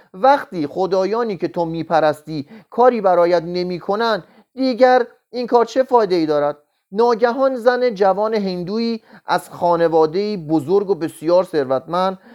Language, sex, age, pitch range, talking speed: Persian, male, 30-49, 165-230 Hz, 115 wpm